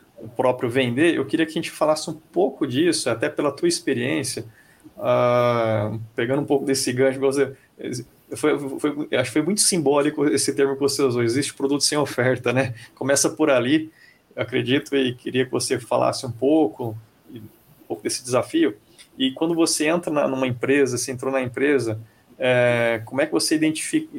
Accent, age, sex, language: Brazilian, 20-39, male, Portuguese